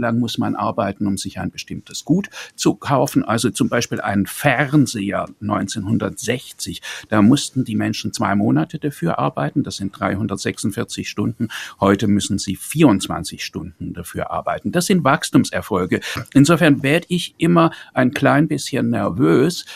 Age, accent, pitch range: 50-69, German, 100-145 Hz